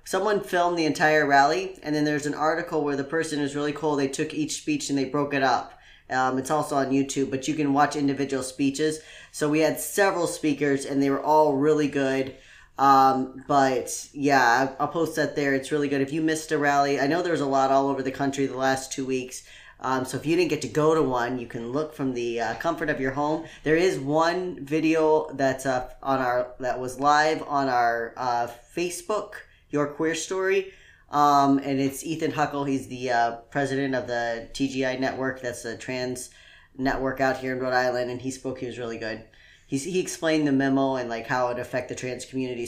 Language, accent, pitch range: English, American, 130-155 Hz